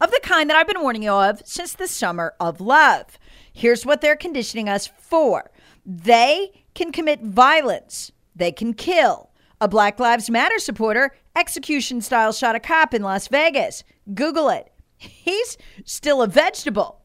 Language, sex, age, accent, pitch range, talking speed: English, female, 40-59, American, 225-335 Hz, 160 wpm